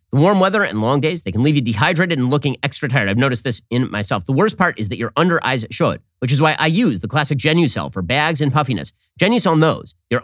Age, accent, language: 30-49, American, English